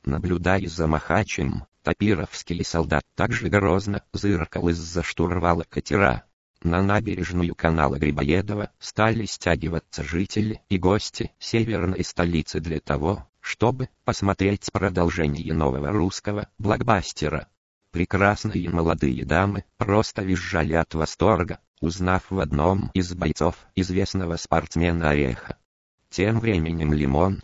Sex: male